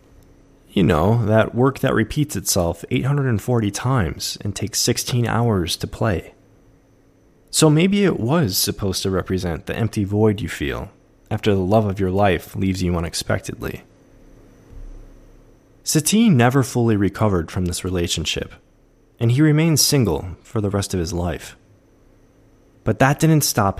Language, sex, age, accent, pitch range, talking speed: English, male, 20-39, American, 95-130 Hz, 145 wpm